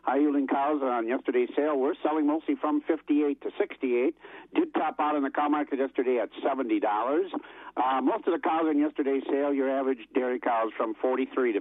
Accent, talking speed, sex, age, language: American, 195 wpm, male, 60-79, English